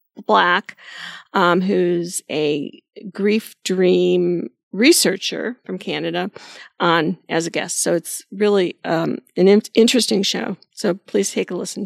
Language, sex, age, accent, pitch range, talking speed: English, female, 40-59, American, 180-225 Hz, 130 wpm